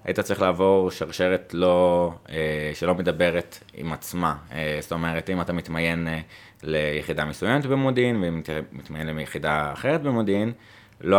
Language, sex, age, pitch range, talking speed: Hebrew, male, 20-39, 80-100 Hz, 130 wpm